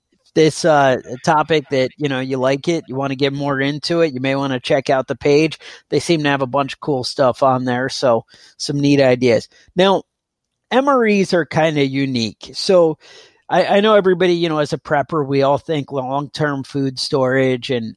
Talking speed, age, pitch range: 205 wpm, 30-49, 130-165 Hz